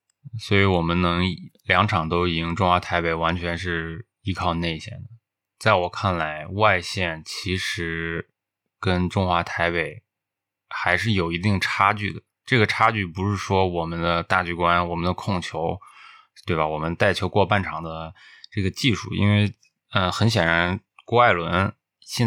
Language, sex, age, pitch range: Chinese, male, 20-39, 85-105 Hz